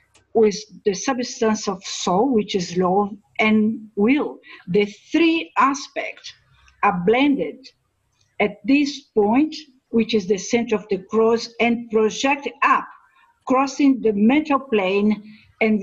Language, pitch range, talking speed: English, 200-255 Hz, 125 wpm